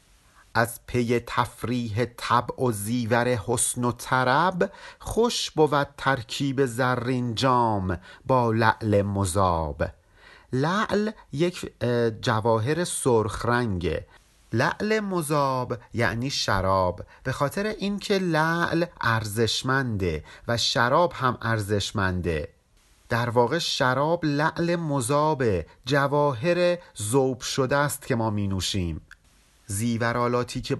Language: Persian